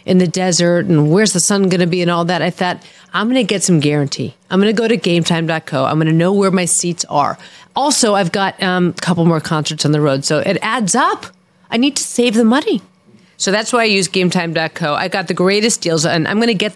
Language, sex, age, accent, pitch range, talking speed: English, female, 40-59, American, 165-210 Hz, 260 wpm